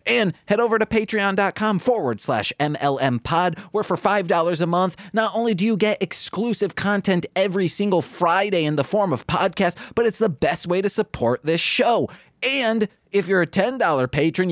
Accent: American